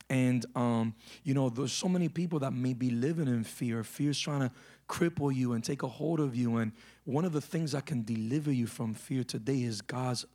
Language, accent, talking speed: English, American, 230 wpm